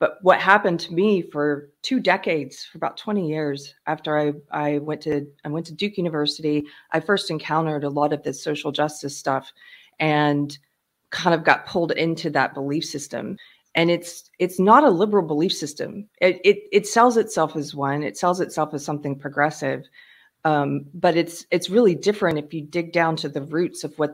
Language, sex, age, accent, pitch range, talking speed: English, female, 30-49, American, 150-190 Hz, 190 wpm